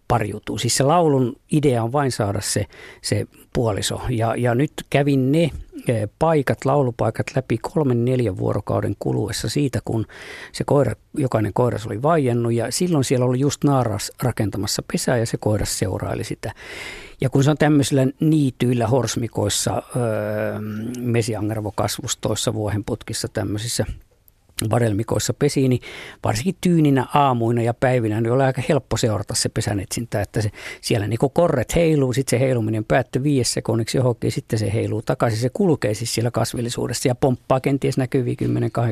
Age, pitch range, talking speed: 50-69, 110-135 Hz, 145 wpm